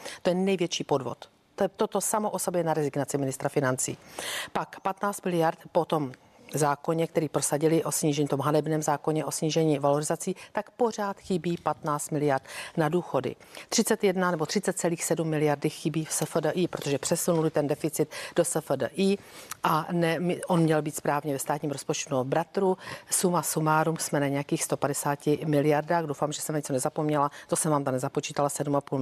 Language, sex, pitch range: Czech, female, 145-175 Hz